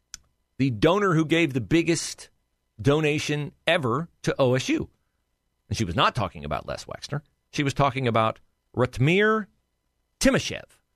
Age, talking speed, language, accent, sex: 40-59, 130 wpm, English, American, male